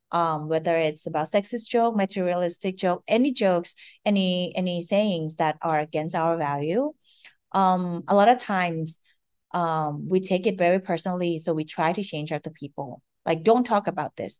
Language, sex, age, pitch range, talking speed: English, female, 30-49, 165-200 Hz, 170 wpm